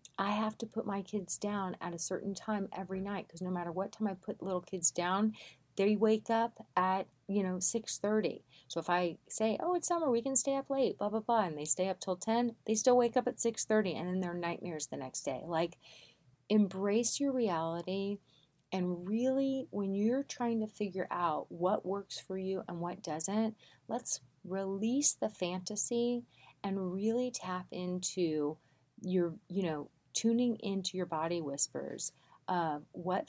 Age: 30-49